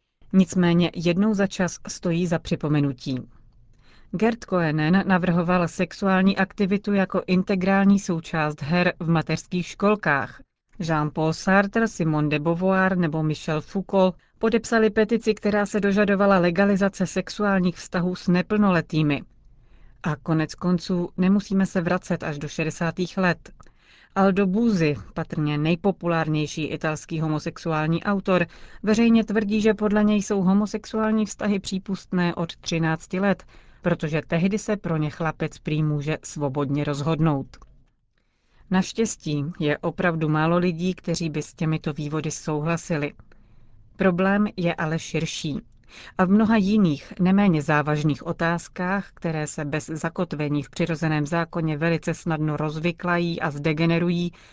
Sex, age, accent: female, 40-59, native